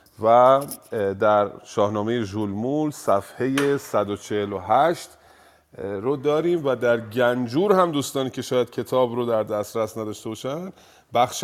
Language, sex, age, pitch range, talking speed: Persian, male, 30-49, 100-135 Hz, 115 wpm